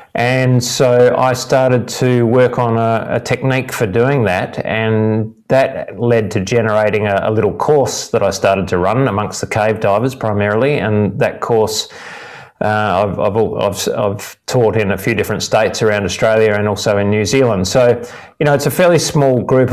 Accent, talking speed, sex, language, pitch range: Australian, 185 wpm, male, English, 105-125 Hz